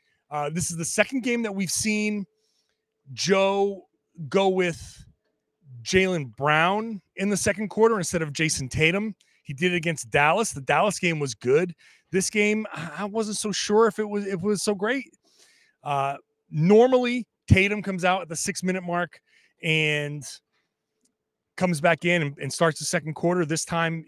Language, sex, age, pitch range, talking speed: English, male, 30-49, 150-200 Hz, 165 wpm